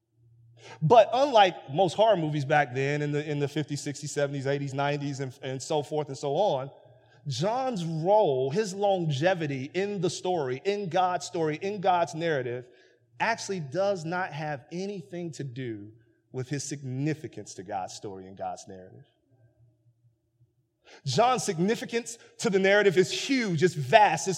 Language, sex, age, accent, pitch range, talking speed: English, male, 30-49, American, 120-175 Hz, 155 wpm